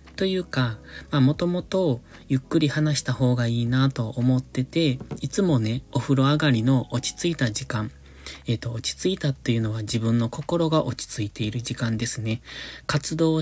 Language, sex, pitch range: Japanese, male, 115-150 Hz